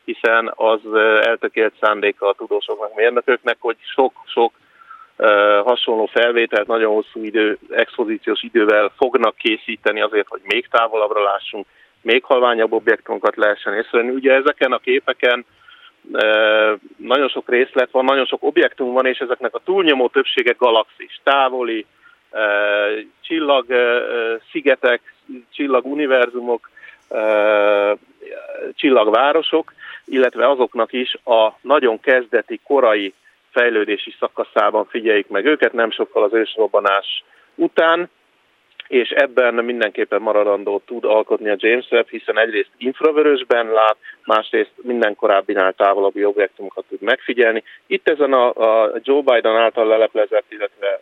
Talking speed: 120 wpm